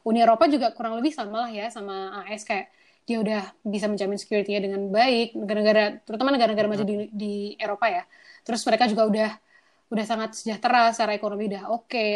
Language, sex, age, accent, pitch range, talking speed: Indonesian, female, 20-39, native, 215-260 Hz, 190 wpm